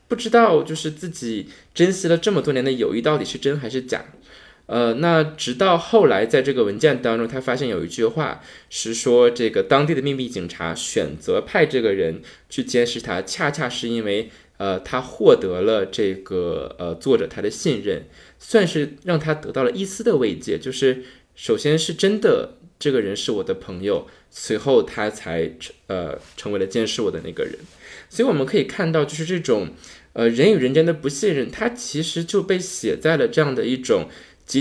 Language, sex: Chinese, male